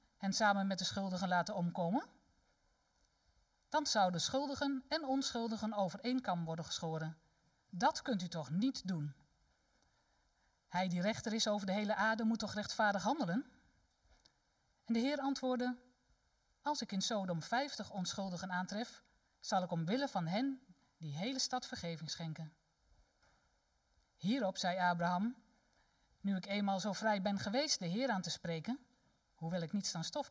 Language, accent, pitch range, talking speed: Dutch, Dutch, 170-250 Hz, 150 wpm